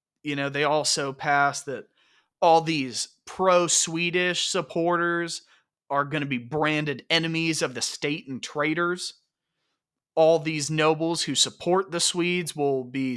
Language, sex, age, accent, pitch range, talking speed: English, male, 30-49, American, 135-165 Hz, 135 wpm